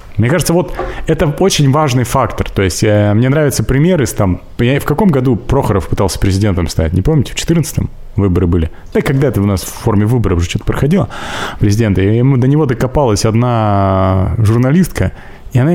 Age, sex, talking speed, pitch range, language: 30-49, male, 175 wpm, 95-130 Hz, Russian